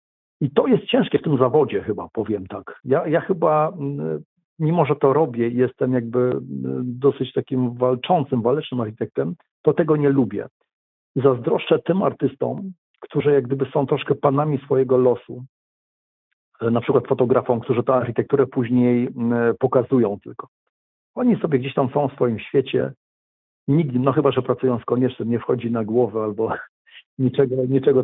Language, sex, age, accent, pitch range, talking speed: Polish, male, 50-69, native, 120-145 Hz, 150 wpm